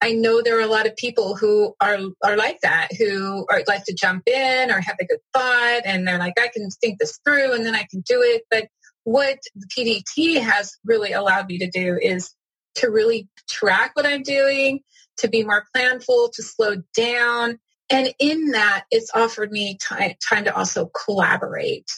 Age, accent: 30-49, American